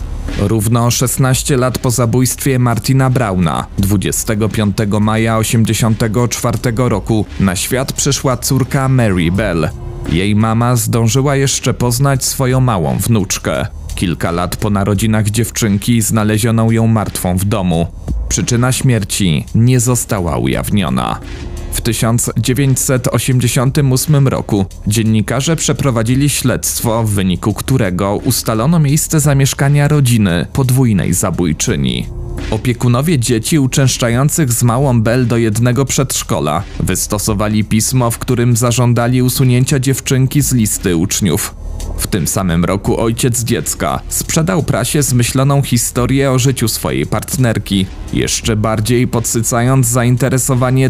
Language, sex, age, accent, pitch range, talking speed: Polish, male, 40-59, native, 100-130 Hz, 110 wpm